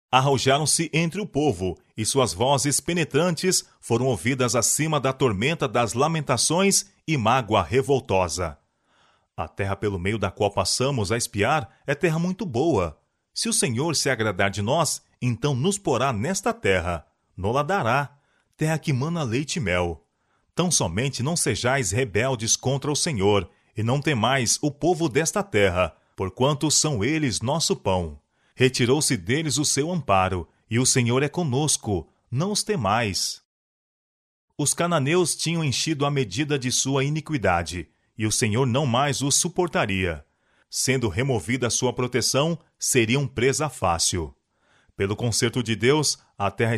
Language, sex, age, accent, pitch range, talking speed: Portuguese, male, 30-49, Brazilian, 105-150 Hz, 145 wpm